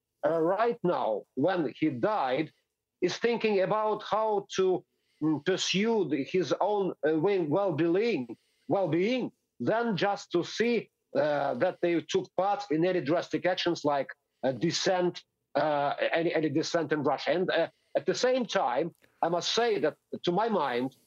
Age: 50-69